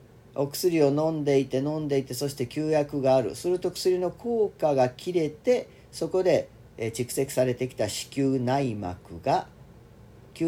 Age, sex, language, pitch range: 40-59, male, Japanese, 120-165 Hz